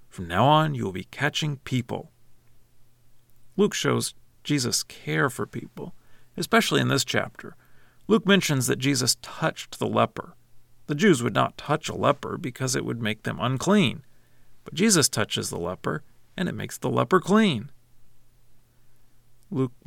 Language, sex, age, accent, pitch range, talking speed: English, male, 40-59, American, 120-140 Hz, 150 wpm